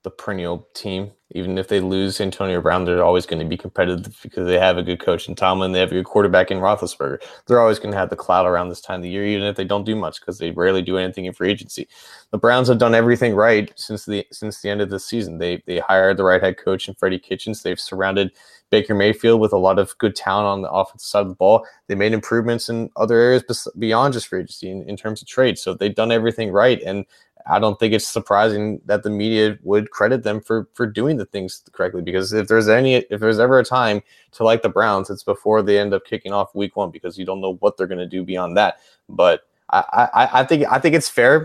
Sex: male